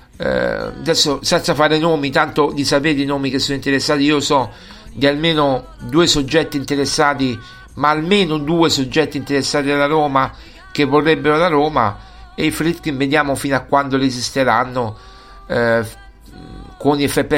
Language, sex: Italian, male